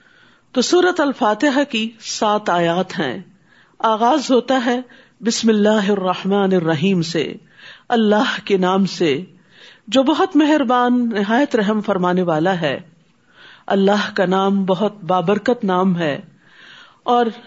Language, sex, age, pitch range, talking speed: Urdu, female, 50-69, 185-270 Hz, 115 wpm